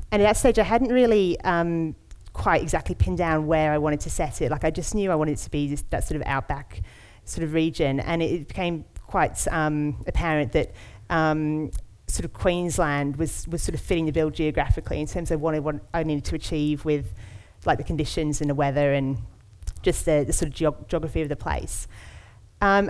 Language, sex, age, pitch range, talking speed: English, female, 30-49, 145-170 Hz, 220 wpm